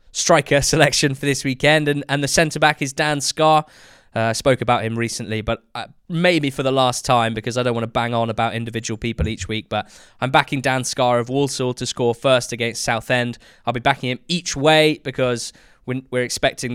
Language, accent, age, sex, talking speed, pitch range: English, British, 10-29, male, 210 wpm, 115-140 Hz